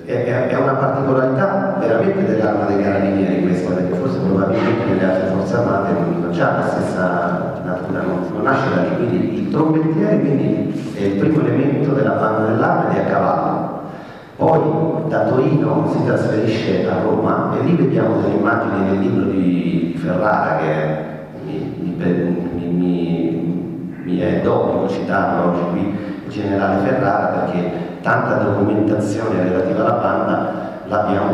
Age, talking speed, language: 40-59, 140 wpm, Italian